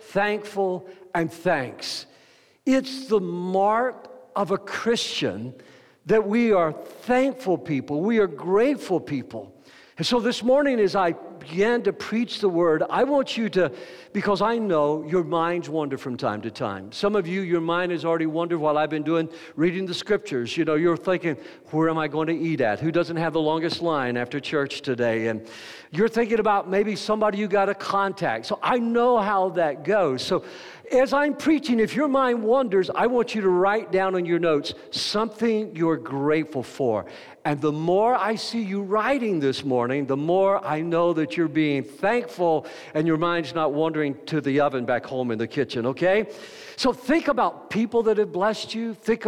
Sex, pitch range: male, 160-220 Hz